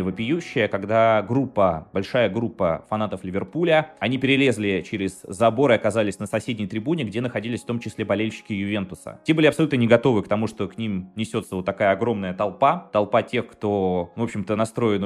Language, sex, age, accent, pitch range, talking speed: Russian, male, 20-39, native, 95-120 Hz, 175 wpm